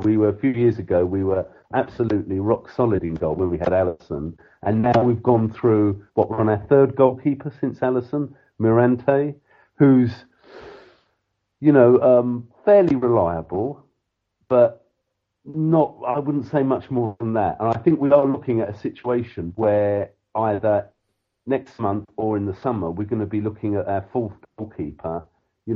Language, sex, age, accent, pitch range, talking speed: English, male, 50-69, British, 100-125 Hz, 170 wpm